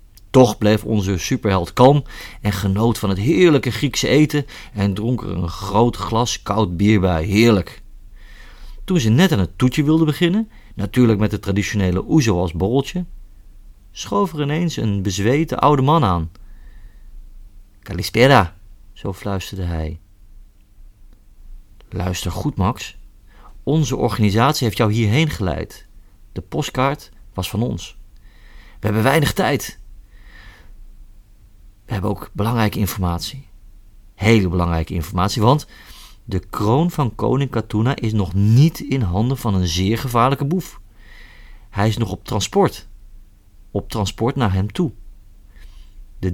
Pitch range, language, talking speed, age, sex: 100-125 Hz, Dutch, 130 wpm, 40-59, male